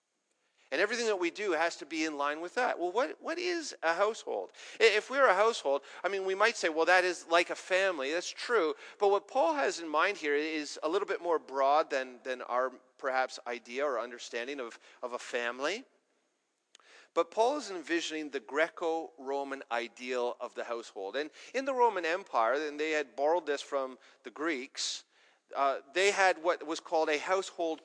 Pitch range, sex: 160-260 Hz, male